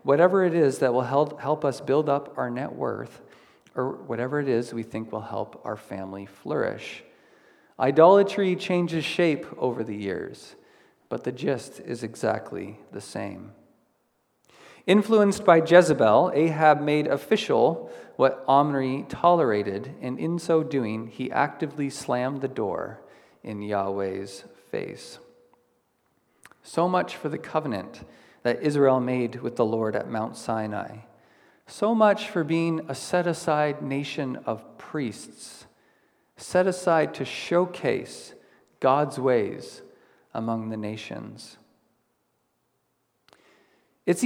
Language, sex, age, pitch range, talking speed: English, male, 40-59, 125-180 Hz, 120 wpm